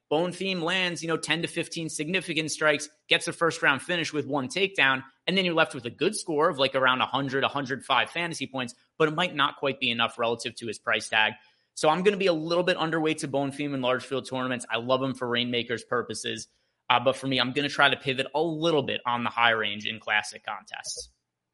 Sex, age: male, 20-39